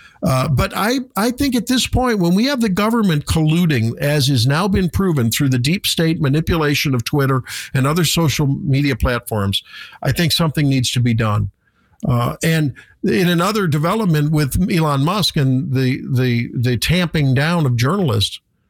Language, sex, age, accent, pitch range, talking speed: English, male, 50-69, American, 135-190 Hz, 170 wpm